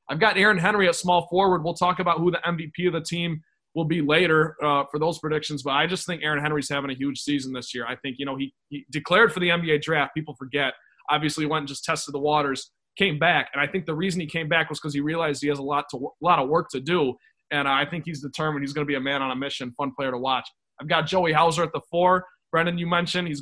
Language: English